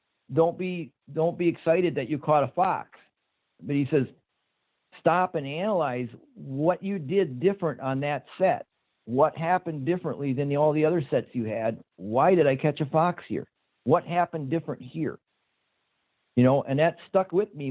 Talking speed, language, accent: 175 wpm, English, American